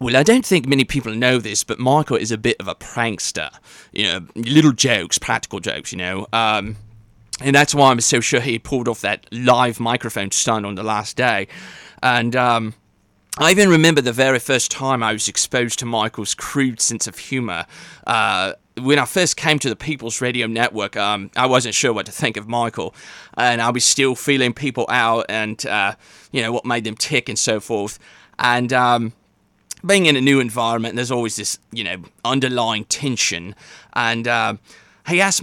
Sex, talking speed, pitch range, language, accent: male, 195 wpm, 110-135 Hz, English, British